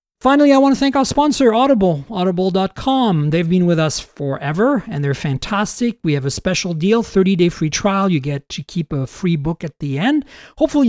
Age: 40-59